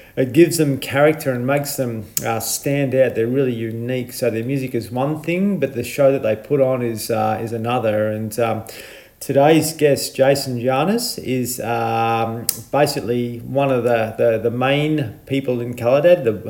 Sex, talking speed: male, 180 wpm